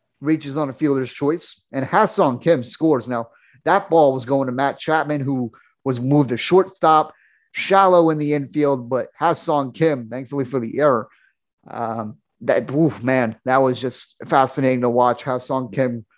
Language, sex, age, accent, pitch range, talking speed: English, male, 30-49, American, 125-155 Hz, 165 wpm